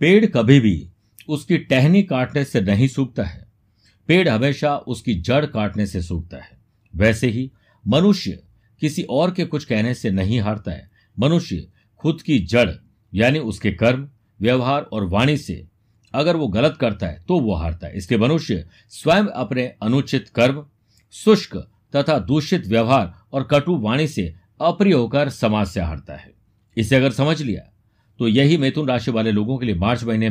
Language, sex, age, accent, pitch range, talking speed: Hindi, male, 60-79, native, 105-145 Hz, 165 wpm